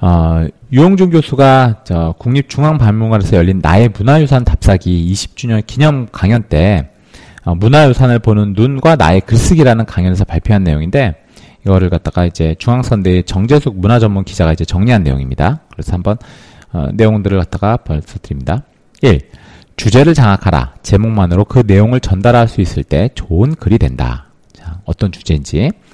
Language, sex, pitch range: Korean, male, 85-120 Hz